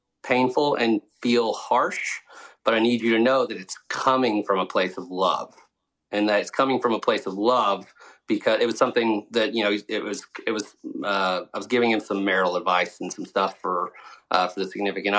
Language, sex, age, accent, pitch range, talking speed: English, male, 30-49, American, 100-120 Hz, 215 wpm